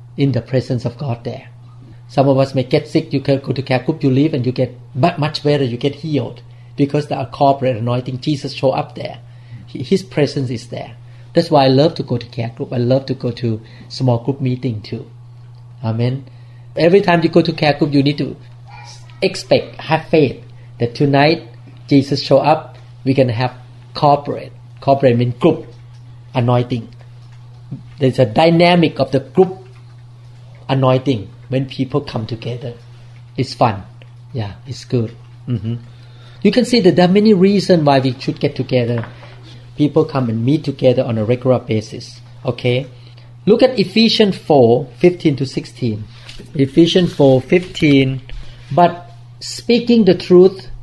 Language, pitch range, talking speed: English, 120-150 Hz, 170 wpm